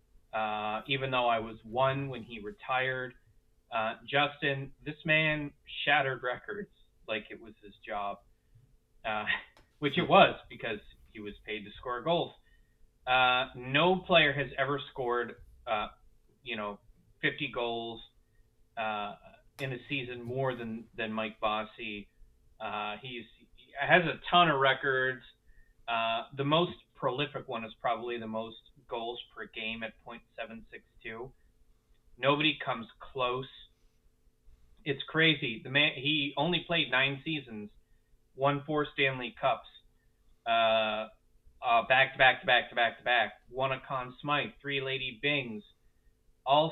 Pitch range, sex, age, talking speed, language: 110-140 Hz, male, 20-39, 135 wpm, English